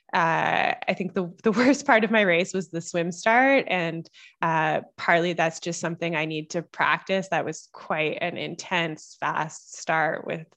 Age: 20-39